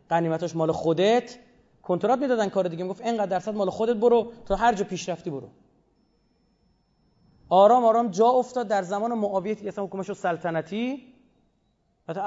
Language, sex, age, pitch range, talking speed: Persian, male, 30-49, 175-225 Hz, 145 wpm